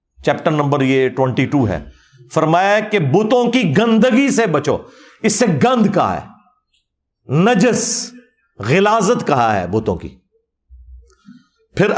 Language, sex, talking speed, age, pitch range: Urdu, male, 125 wpm, 50-69, 160-225 Hz